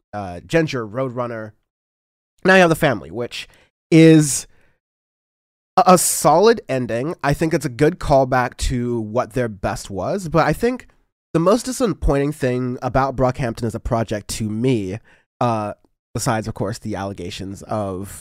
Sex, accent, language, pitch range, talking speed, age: male, American, English, 105-135 Hz, 150 wpm, 20-39